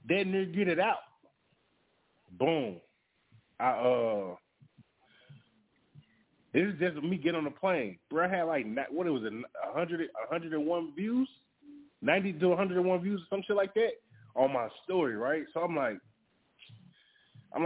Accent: American